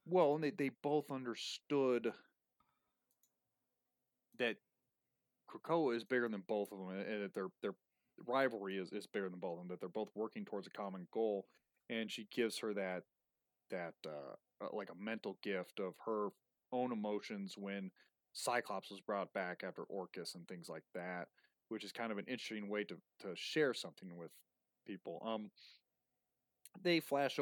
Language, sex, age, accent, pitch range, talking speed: English, male, 30-49, American, 95-115 Hz, 170 wpm